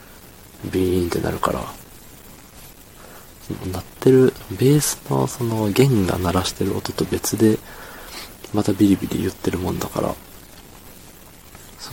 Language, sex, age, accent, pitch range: Japanese, male, 40-59, native, 95-115 Hz